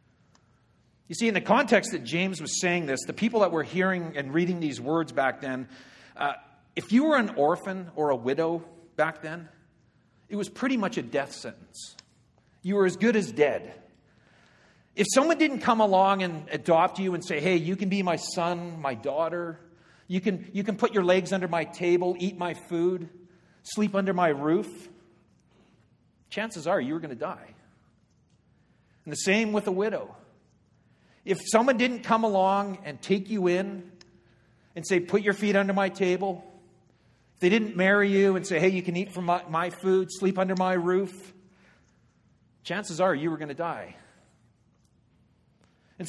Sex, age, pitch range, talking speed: male, 50-69, 165-195 Hz, 175 wpm